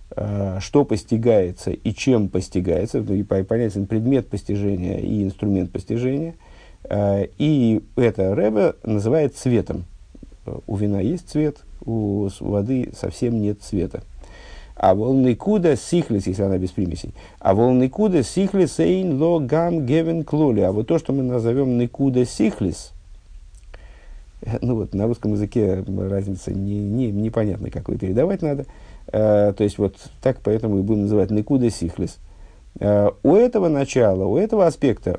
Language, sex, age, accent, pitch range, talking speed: Russian, male, 50-69, native, 100-140 Hz, 135 wpm